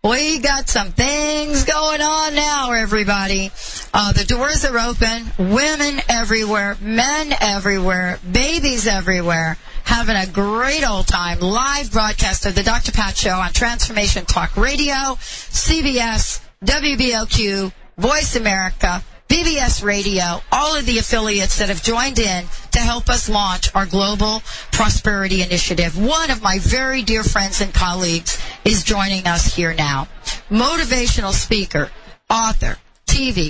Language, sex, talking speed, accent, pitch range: English, female, 135 wpm, American, 190-265 Hz